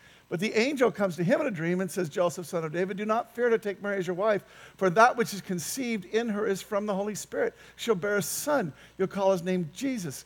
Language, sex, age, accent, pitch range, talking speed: English, male, 50-69, American, 115-190 Hz, 265 wpm